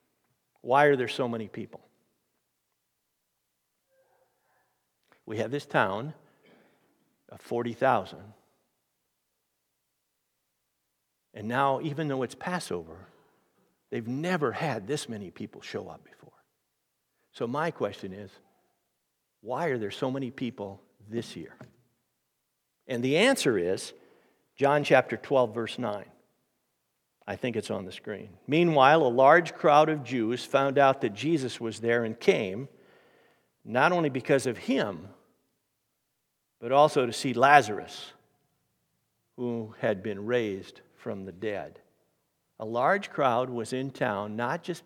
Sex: male